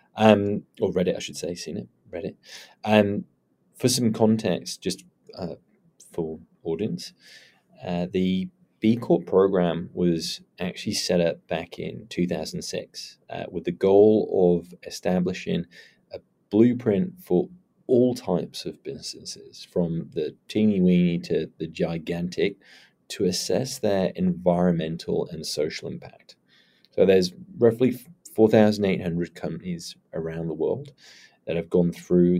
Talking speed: 135 wpm